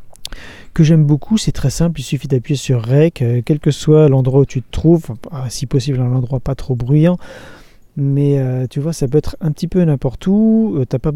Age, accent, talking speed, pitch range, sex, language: 40-59, French, 220 wpm, 130-165 Hz, male, French